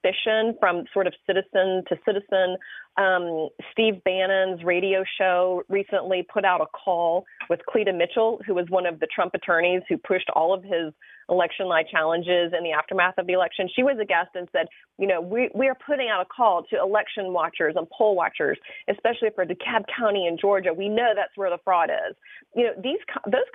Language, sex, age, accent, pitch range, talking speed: English, female, 30-49, American, 180-215 Hz, 200 wpm